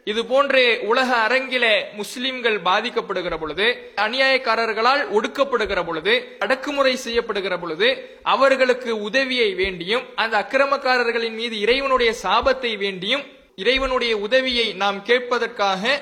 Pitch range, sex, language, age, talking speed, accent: 220-265 Hz, male, English, 20-39, 95 wpm, Indian